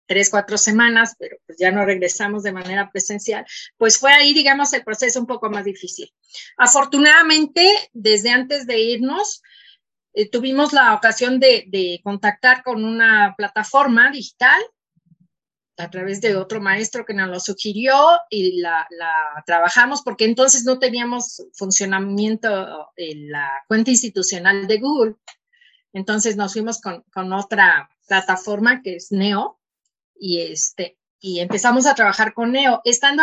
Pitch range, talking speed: 200-270 Hz, 145 wpm